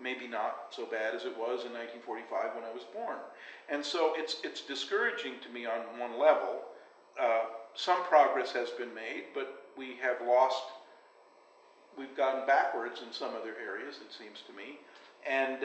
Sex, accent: male, American